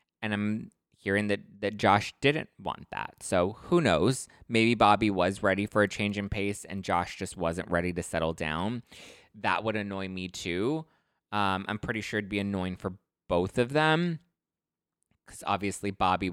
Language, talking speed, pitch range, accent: English, 175 wpm, 90-120 Hz, American